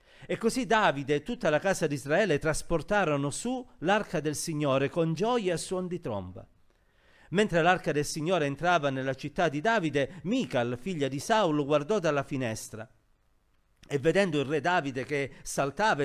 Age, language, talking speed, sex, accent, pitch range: 50-69, Italian, 160 wpm, male, native, 135-185 Hz